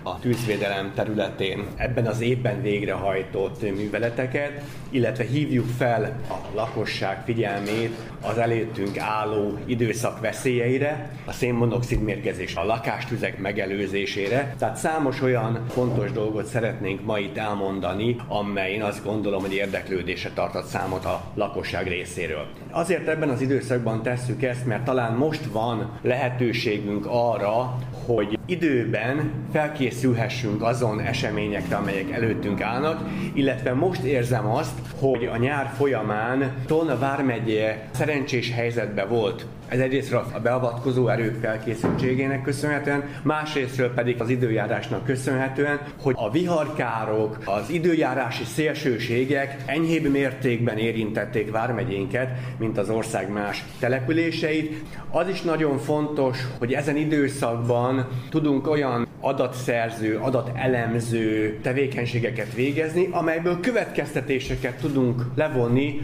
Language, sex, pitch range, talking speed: Hungarian, male, 110-140 Hz, 110 wpm